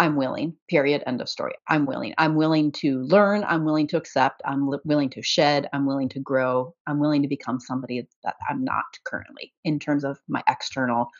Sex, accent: female, American